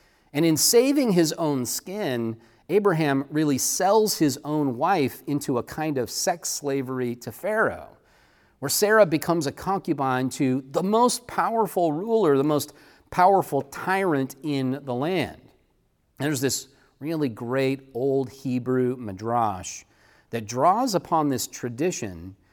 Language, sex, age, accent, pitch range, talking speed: English, male, 40-59, American, 120-165 Hz, 130 wpm